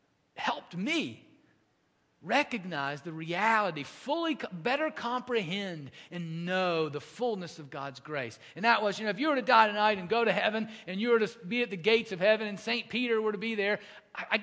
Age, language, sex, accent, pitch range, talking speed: 40-59, English, male, American, 165-225 Hz, 200 wpm